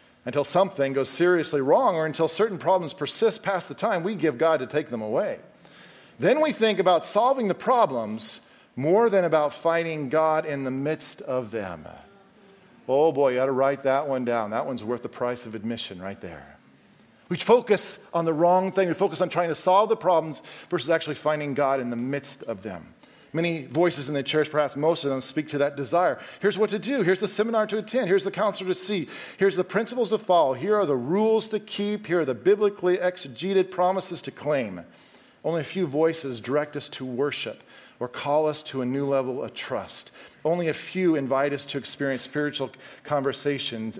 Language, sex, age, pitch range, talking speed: English, male, 40-59, 140-185 Hz, 205 wpm